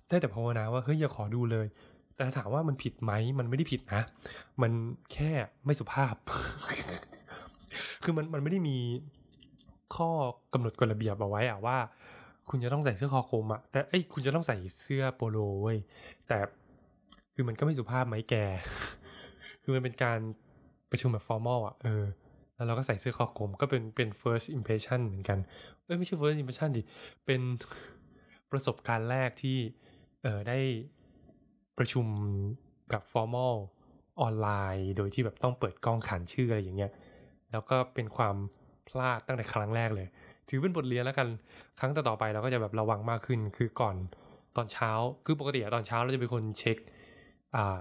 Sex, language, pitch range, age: male, Thai, 110-130 Hz, 20-39